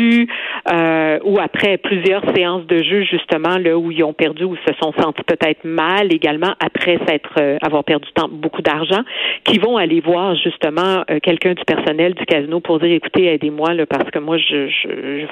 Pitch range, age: 160-200 Hz, 50-69